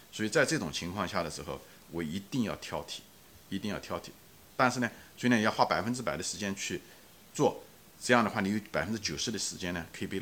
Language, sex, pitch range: Chinese, male, 85-115 Hz